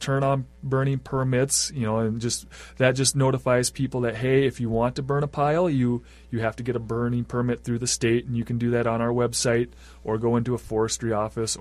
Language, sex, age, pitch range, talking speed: English, male, 30-49, 110-130 Hz, 240 wpm